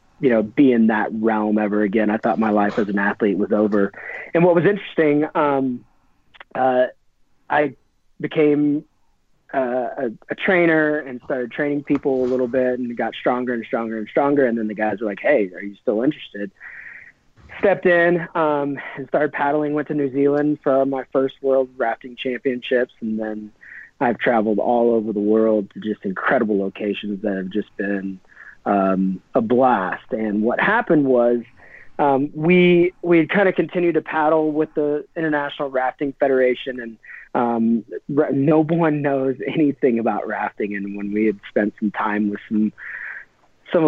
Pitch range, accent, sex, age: 110-150 Hz, American, male, 30-49